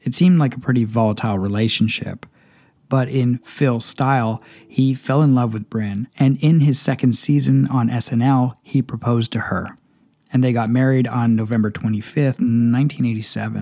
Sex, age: male, 40-59